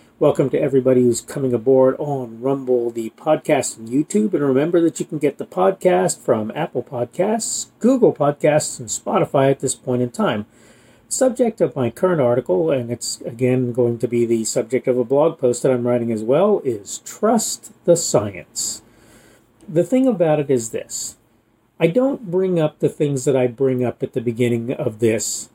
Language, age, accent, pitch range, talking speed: English, 40-59, American, 120-155 Hz, 185 wpm